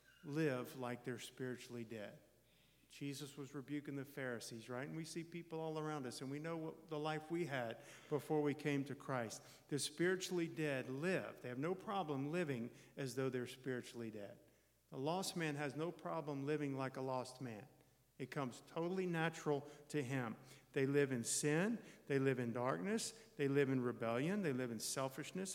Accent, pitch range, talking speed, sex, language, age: American, 130-160 Hz, 185 wpm, male, English, 50-69